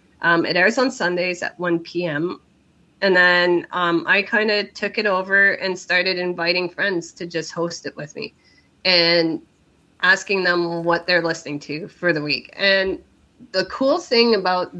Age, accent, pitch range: 20-39, American, 155-185 Hz